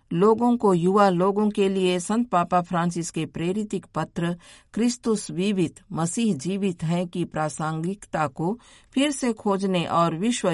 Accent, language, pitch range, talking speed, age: native, Hindi, 160-205 Hz, 140 wpm, 50-69